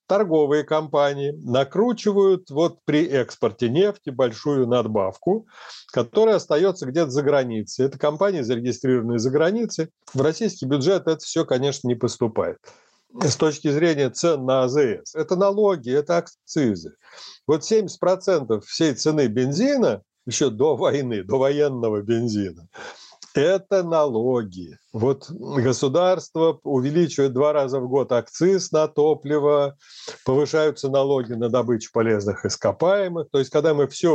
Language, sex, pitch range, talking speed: Russian, male, 130-175 Hz, 125 wpm